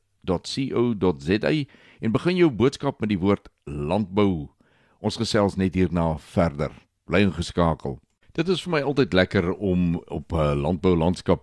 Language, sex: Swedish, male